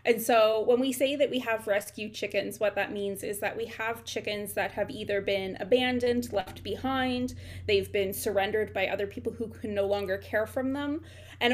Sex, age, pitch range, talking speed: female, 20-39, 195-235 Hz, 205 wpm